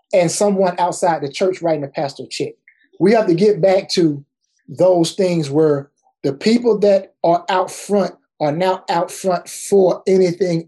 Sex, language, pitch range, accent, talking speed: male, English, 155-205 Hz, American, 170 wpm